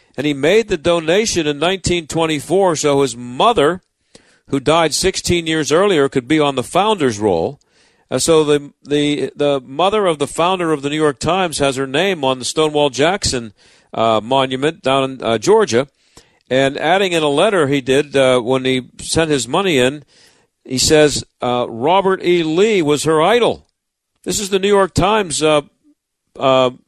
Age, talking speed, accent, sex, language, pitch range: 50-69, 175 wpm, American, male, English, 140-185 Hz